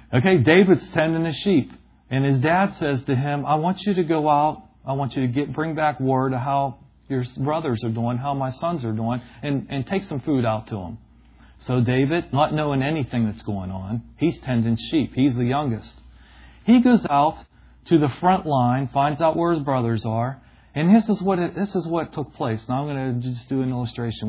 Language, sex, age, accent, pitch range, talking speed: English, male, 40-59, American, 120-160 Hz, 220 wpm